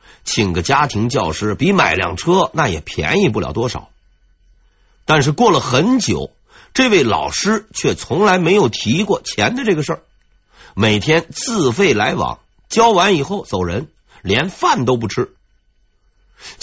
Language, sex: Chinese, male